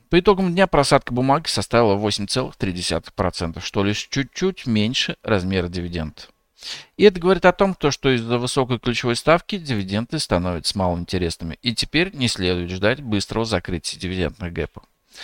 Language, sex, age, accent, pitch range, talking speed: Russian, male, 50-69, native, 100-155 Hz, 140 wpm